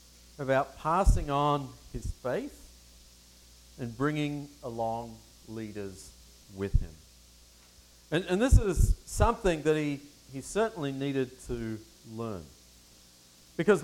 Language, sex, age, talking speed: English, male, 40-59, 105 wpm